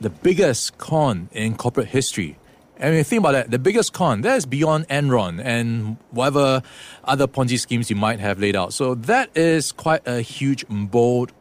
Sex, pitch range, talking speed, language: male, 105-135 Hz, 185 wpm, English